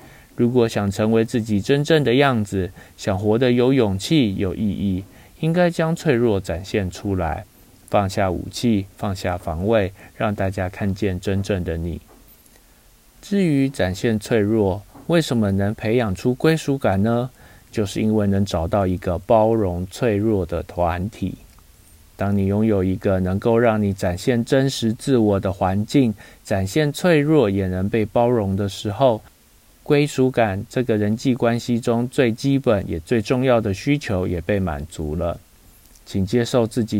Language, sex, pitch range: Chinese, male, 95-120 Hz